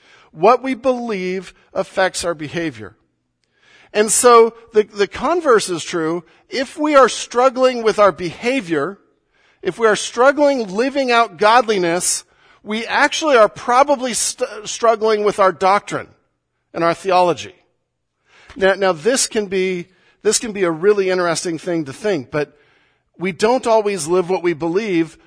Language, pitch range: English, 150-205 Hz